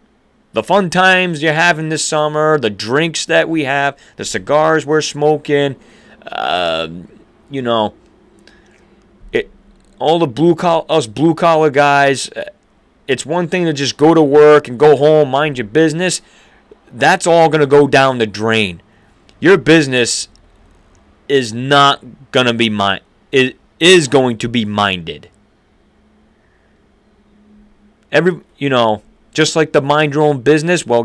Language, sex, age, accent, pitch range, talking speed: English, male, 30-49, American, 115-160 Hz, 145 wpm